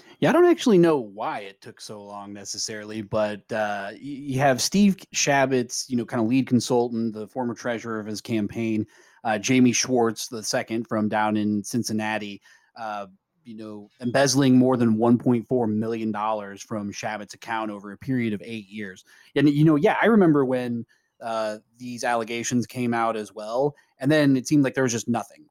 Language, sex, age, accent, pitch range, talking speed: English, male, 30-49, American, 105-135 Hz, 190 wpm